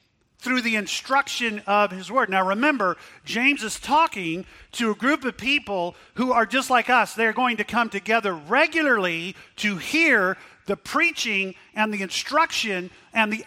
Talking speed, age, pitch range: 160 wpm, 40-59, 195-250 Hz